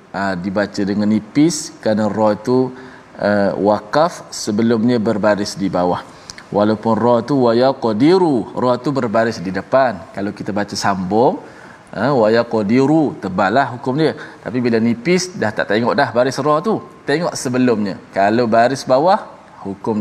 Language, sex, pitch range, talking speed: Malayalam, male, 110-175 Hz, 145 wpm